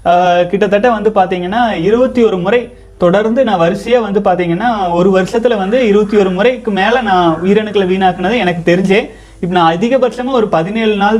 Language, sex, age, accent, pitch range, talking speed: Tamil, male, 30-49, native, 180-225 Hz, 160 wpm